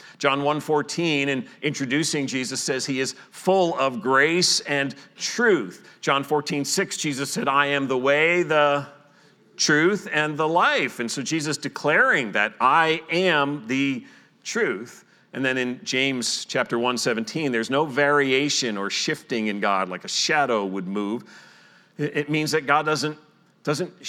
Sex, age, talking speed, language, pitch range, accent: male, 40-59, 150 wpm, English, 125-150 Hz, American